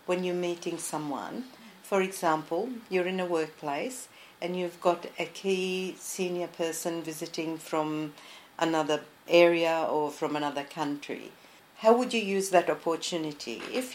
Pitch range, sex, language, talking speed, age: 155-185 Hz, female, English, 140 wpm, 50-69